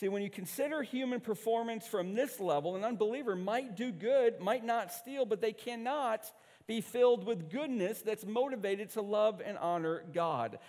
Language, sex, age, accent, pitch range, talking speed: English, male, 50-69, American, 160-240 Hz, 175 wpm